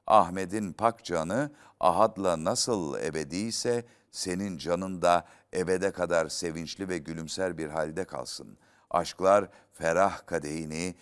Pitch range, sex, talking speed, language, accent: 80-100 Hz, male, 110 wpm, Turkish, native